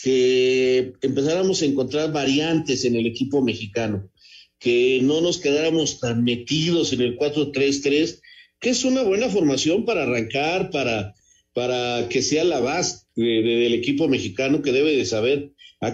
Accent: Mexican